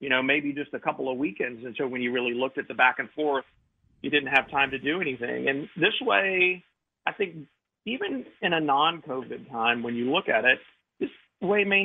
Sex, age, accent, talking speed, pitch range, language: male, 40-59, American, 225 wpm, 120-145 Hz, English